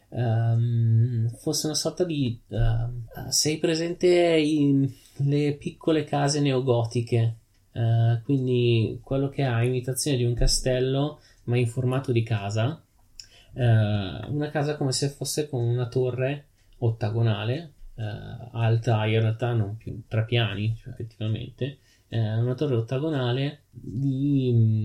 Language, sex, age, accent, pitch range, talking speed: Italian, male, 30-49, native, 110-135 Hz, 110 wpm